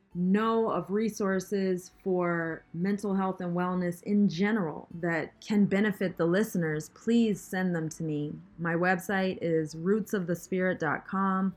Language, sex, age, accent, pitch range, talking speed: English, female, 20-39, American, 160-190 Hz, 125 wpm